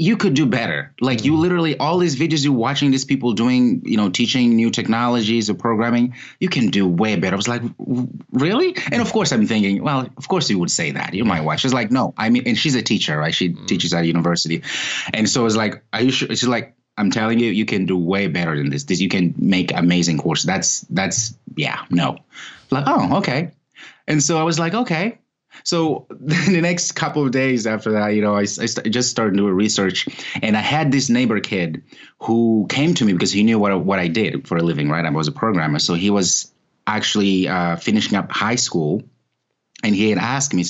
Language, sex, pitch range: English, male, 100-135 Hz